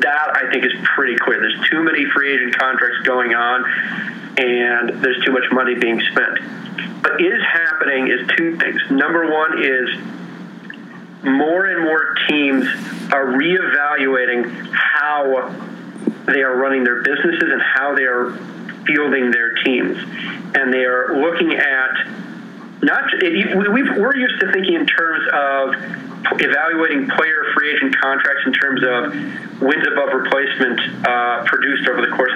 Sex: male